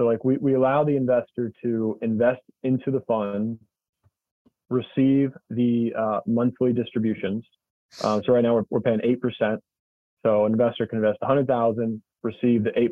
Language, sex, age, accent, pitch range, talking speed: English, male, 20-39, American, 110-130 Hz, 170 wpm